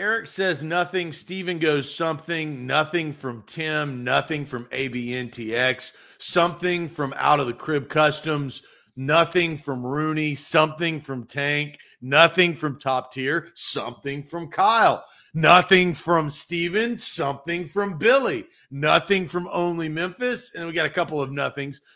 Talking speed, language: 135 wpm, English